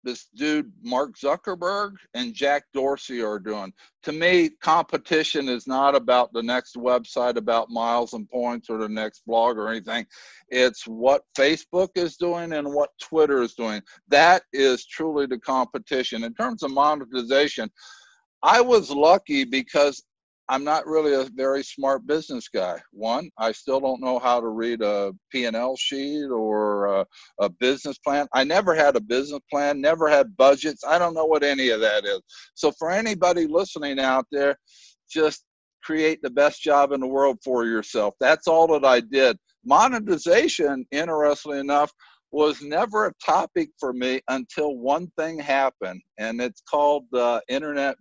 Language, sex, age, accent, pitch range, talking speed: English, male, 60-79, American, 125-155 Hz, 165 wpm